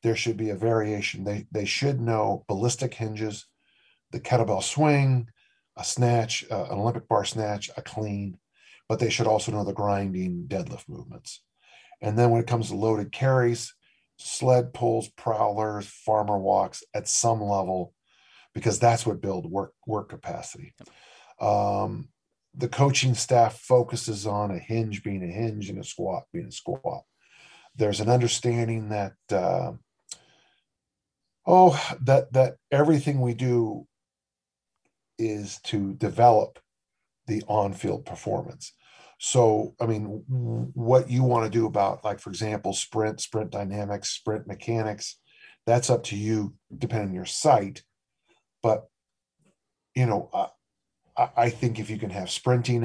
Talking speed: 140 wpm